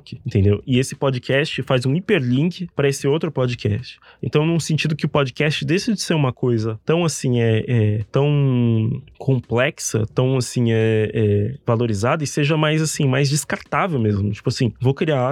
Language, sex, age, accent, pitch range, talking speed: Portuguese, male, 20-39, Brazilian, 120-155 Hz, 170 wpm